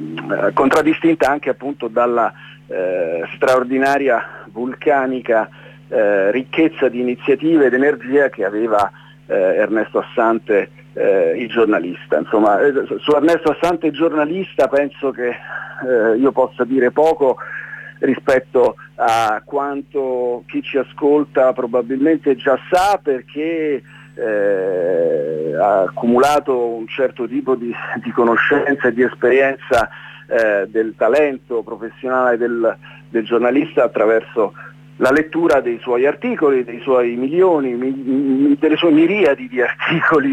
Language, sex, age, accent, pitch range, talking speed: Italian, male, 50-69, native, 125-165 Hz, 115 wpm